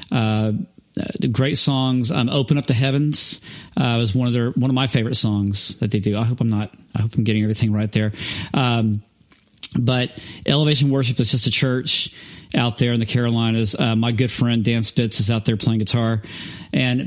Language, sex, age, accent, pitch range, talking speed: English, male, 40-59, American, 115-150 Hz, 200 wpm